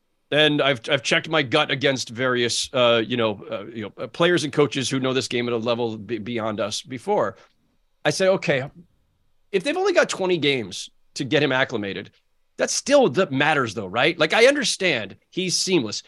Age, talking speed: 40-59, 200 wpm